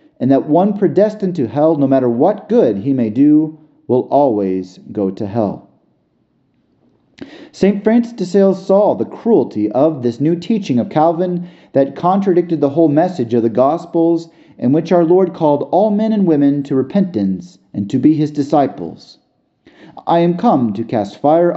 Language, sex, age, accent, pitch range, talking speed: English, male, 40-59, American, 125-185 Hz, 170 wpm